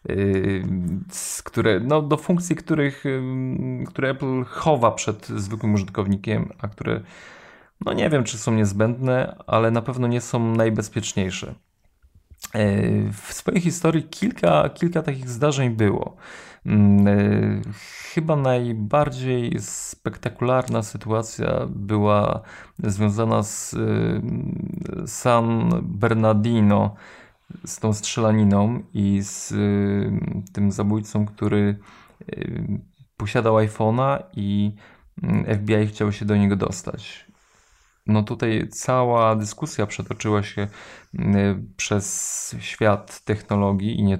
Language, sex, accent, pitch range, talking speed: Polish, male, native, 100-125 Hz, 95 wpm